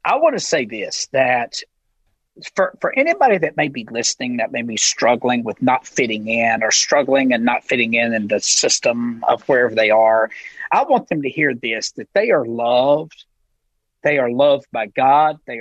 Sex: male